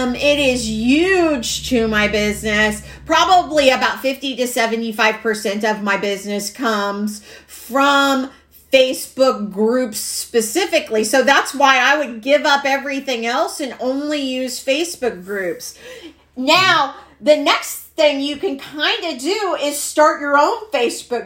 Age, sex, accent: 40-59, female, American